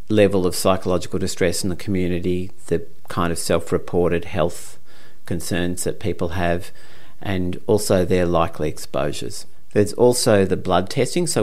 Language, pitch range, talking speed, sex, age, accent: English, 85-100 Hz, 140 wpm, male, 40-59, Australian